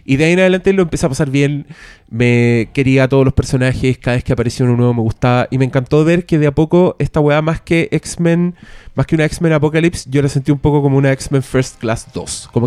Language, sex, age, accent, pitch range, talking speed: Spanish, male, 20-39, Argentinian, 130-165 Hz, 255 wpm